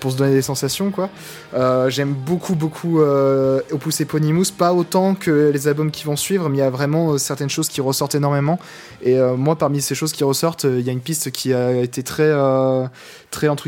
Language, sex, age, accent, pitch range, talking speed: French, male, 20-39, French, 130-150 Hz, 230 wpm